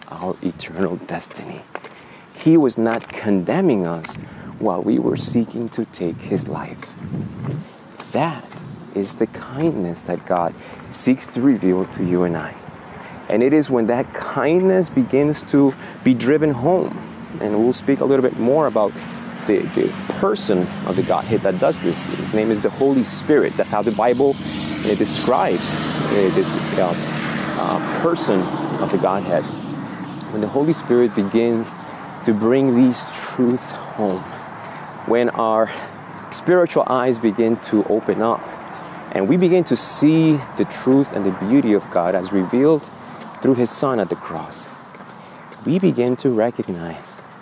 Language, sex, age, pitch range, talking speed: English, male, 30-49, 105-140 Hz, 150 wpm